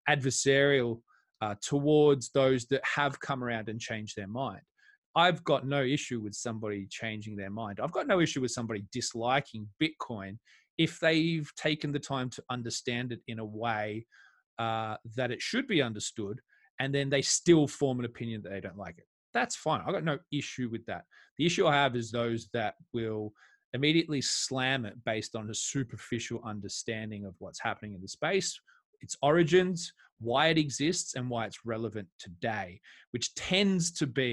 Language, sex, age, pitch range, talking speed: English, male, 20-39, 110-145 Hz, 180 wpm